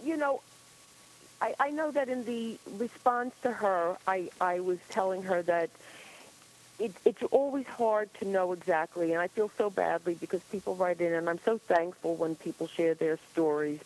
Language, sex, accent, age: English, female, American, 50-69